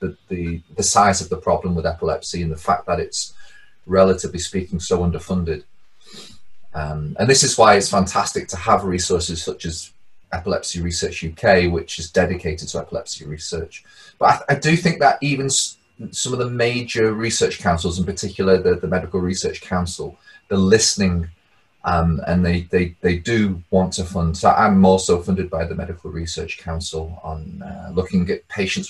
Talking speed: 175 wpm